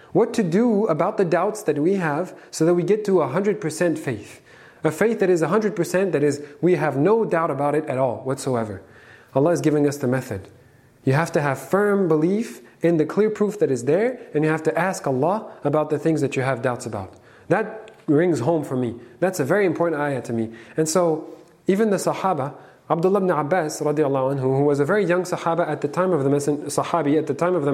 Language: English